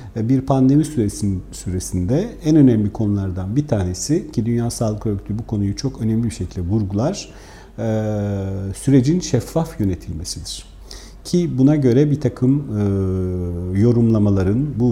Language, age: Turkish, 40-59